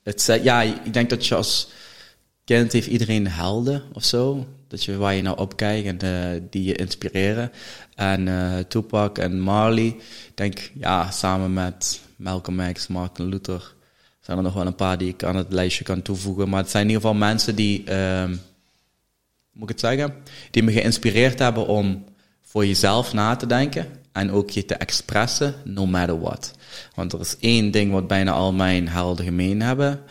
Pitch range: 95-110 Hz